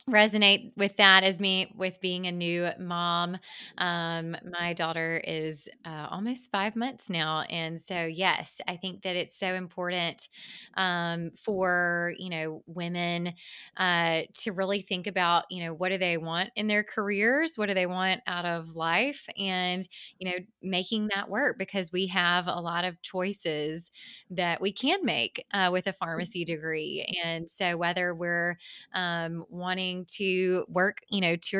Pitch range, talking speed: 170-195 Hz, 165 wpm